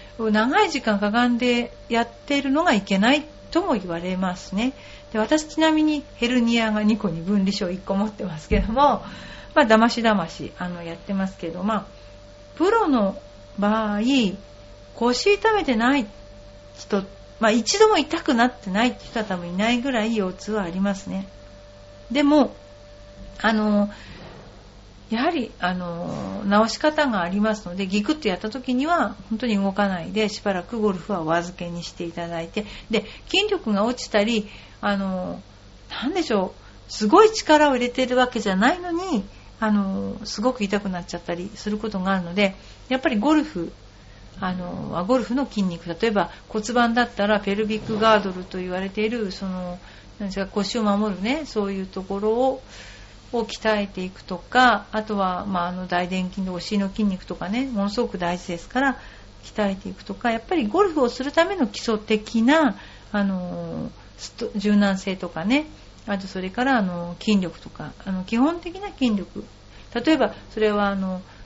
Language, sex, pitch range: Japanese, female, 185-245 Hz